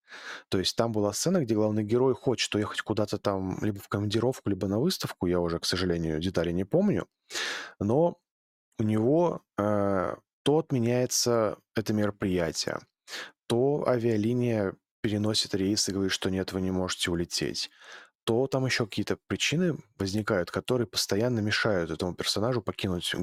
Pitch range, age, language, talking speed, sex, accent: 95-115 Hz, 20-39, Russian, 145 wpm, male, native